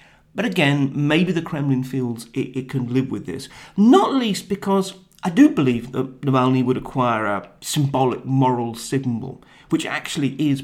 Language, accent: English, British